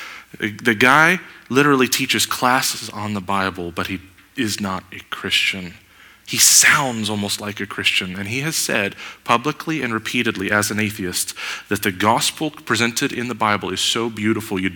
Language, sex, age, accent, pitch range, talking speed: English, male, 30-49, American, 95-125 Hz, 165 wpm